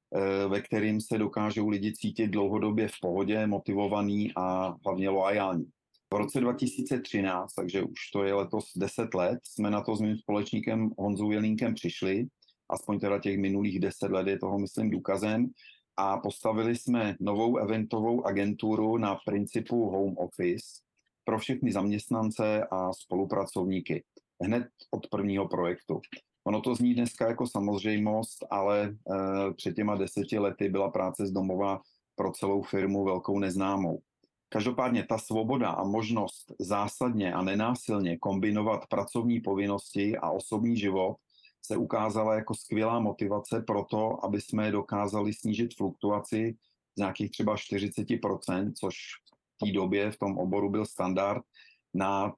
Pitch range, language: 100-110 Hz, Czech